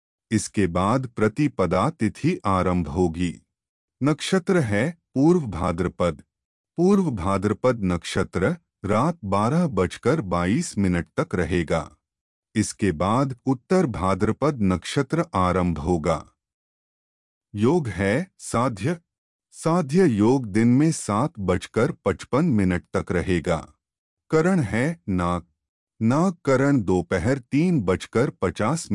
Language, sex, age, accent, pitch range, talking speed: Hindi, male, 30-49, native, 90-140 Hz, 100 wpm